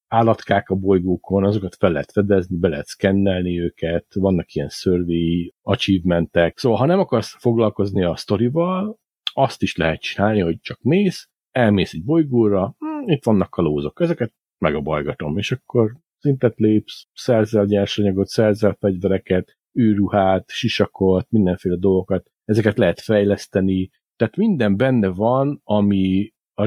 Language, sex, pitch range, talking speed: Hungarian, male, 90-115 Hz, 140 wpm